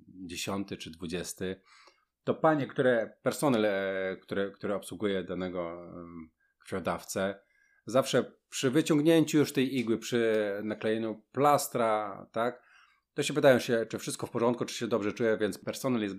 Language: Polish